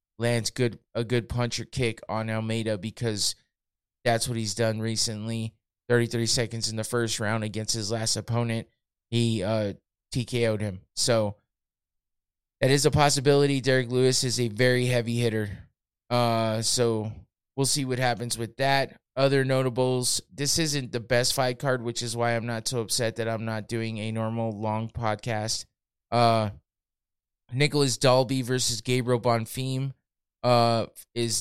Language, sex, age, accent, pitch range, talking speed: English, male, 20-39, American, 110-125 Hz, 150 wpm